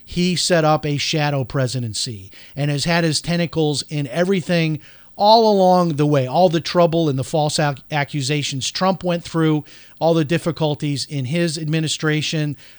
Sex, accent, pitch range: male, American, 145-180 Hz